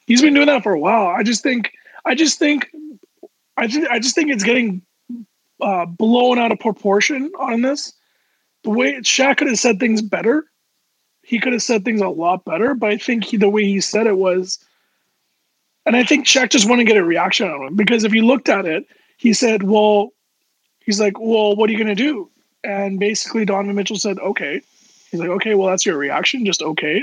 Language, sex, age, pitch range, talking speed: English, male, 20-39, 200-250 Hz, 220 wpm